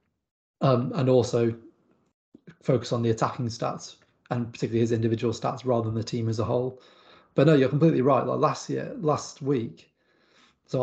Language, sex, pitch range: English, male, 115-130 Hz